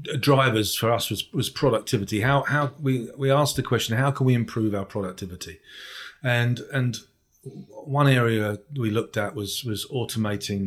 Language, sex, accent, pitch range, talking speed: English, male, British, 105-135 Hz, 165 wpm